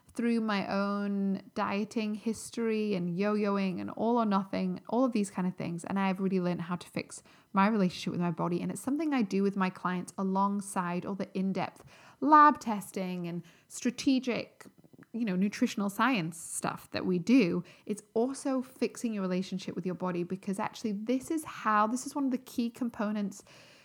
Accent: British